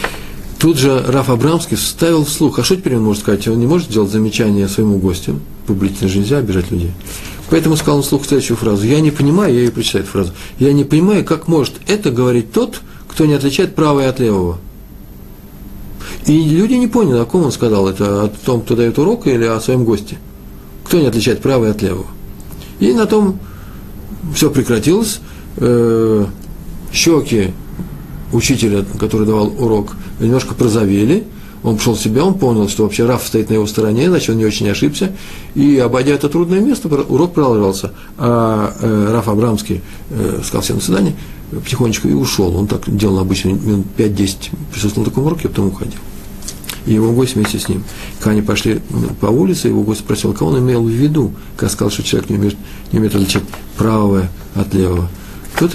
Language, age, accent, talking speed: Russian, 40-59, native, 185 wpm